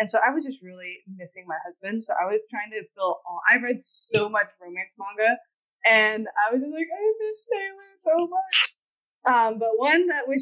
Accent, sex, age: American, female, 20-39